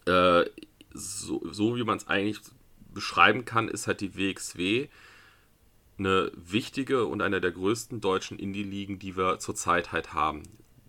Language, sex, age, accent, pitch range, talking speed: German, male, 30-49, German, 90-110 Hz, 140 wpm